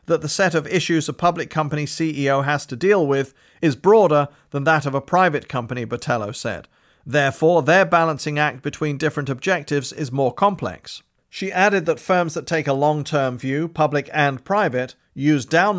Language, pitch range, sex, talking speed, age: English, 140-165 Hz, male, 180 wpm, 40-59